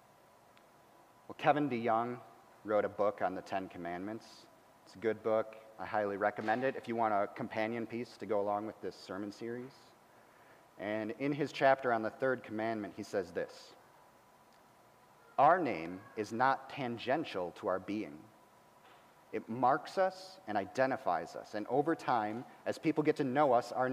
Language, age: English, 30-49